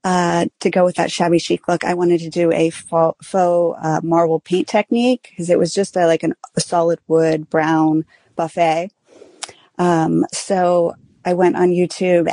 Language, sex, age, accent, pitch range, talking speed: English, female, 30-49, American, 165-190 Hz, 170 wpm